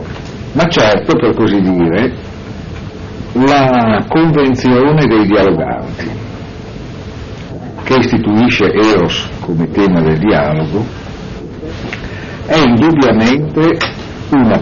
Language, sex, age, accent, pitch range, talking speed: Italian, male, 60-79, native, 95-120 Hz, 80 wpm